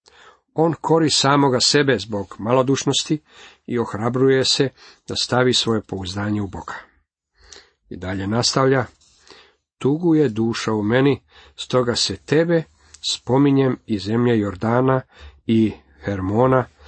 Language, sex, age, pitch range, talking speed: Croatian, male, 50-69, 100-130 Hz, 115 wpm